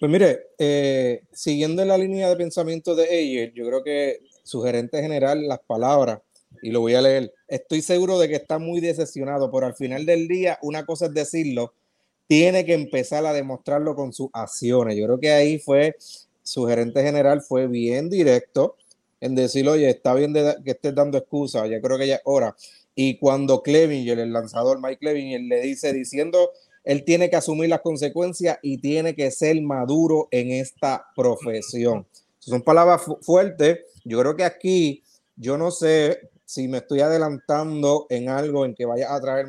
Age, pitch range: 30-49, 130-165 Hz